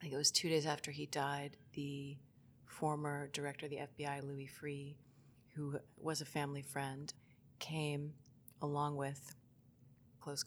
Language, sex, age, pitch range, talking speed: English, female, 30-49, 130-145 Hz, 155 wpm